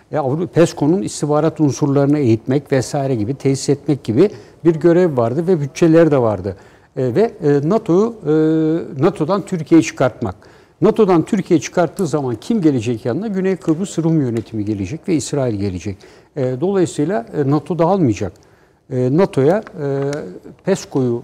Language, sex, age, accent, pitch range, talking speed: Turkish, male, 60-79, native, 130-175 Hz, 140 wpm